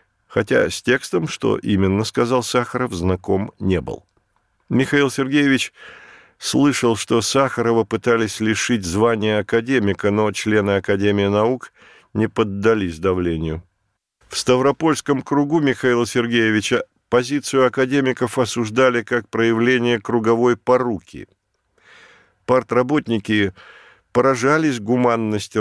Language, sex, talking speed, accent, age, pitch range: Russian, male, 95 wpm, native, 50-69, 100-125 Hz